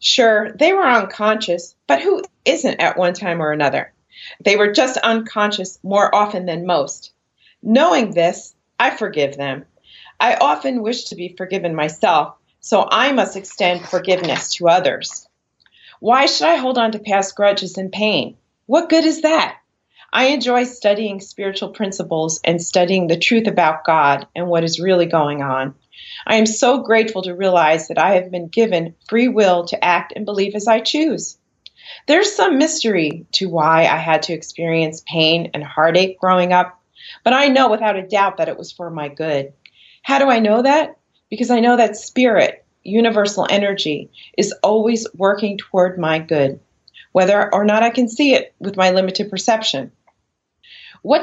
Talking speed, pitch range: 170 wpm, 175-230 Hz